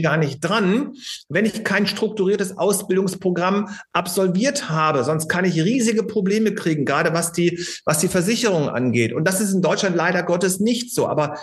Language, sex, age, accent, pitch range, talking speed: German, male, 40-59, German, 170-200 Hz, 175 wpm